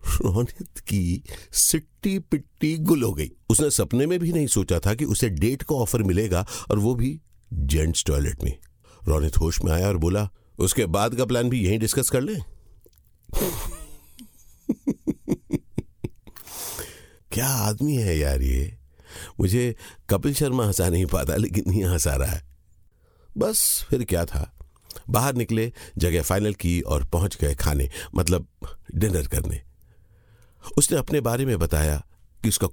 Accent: native